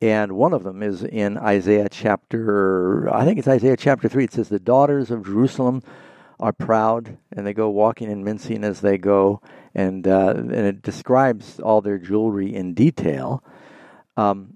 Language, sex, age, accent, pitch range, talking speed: English, male, 60-79, American, 100-120 Hz, 175 wpm